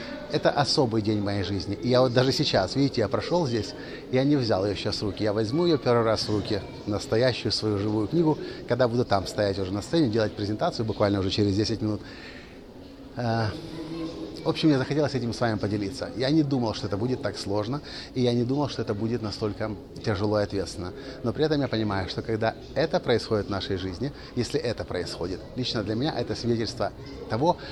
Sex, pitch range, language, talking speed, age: male, 105-135 Hz, Russian, 205 wpm, 30-49